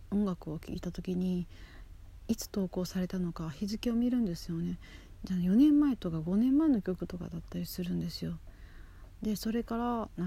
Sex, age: female, 40-59